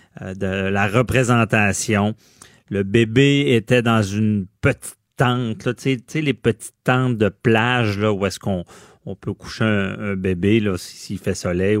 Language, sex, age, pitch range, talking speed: French, male, 40-59, 100-125 Hz, 160 wpm